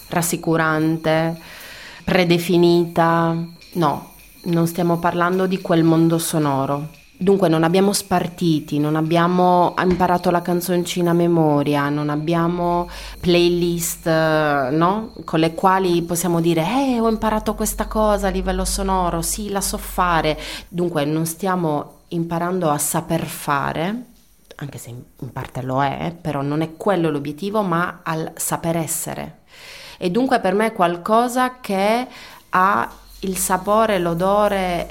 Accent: Italian